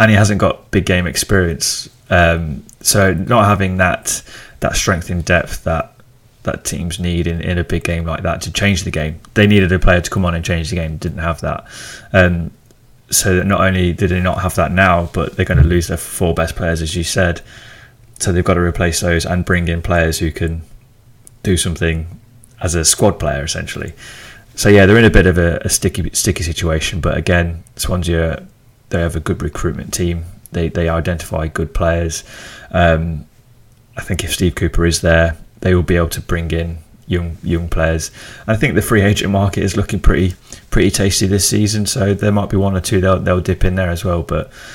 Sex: male